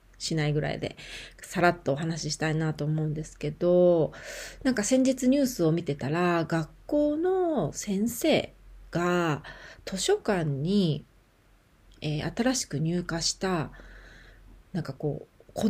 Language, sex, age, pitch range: Japanese, female, 40-59, 150-235 Hz